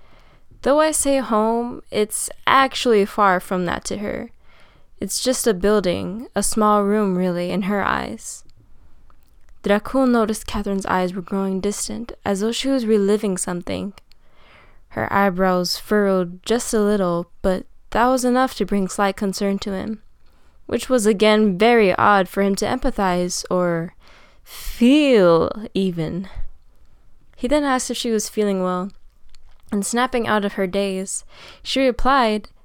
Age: 10-29